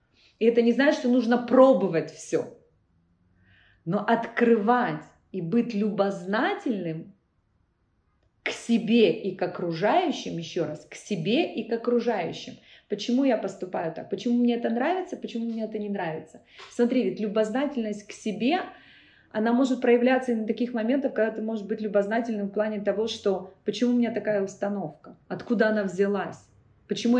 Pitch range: 175-235 Hz